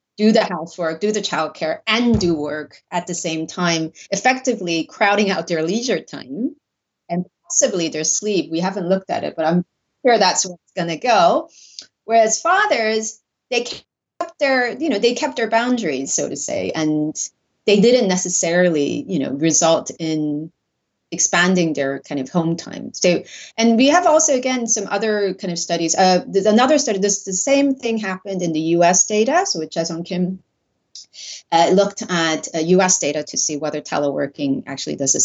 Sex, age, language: female, 30-49, English